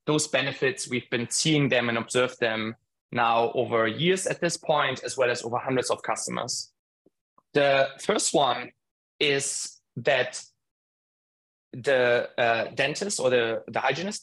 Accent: German